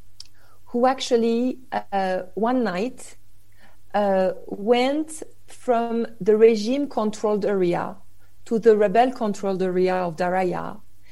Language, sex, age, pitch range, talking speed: English, female, 40-59, 180-225 Hz, 90 wpm